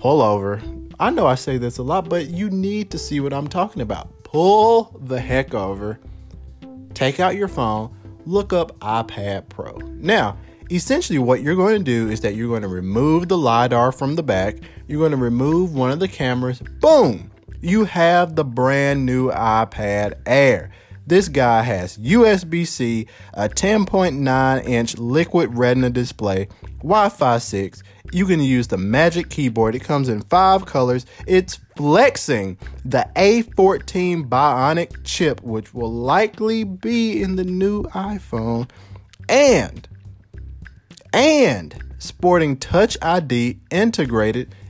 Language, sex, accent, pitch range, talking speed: English, male, American, 105-175 Hz, 145 wpm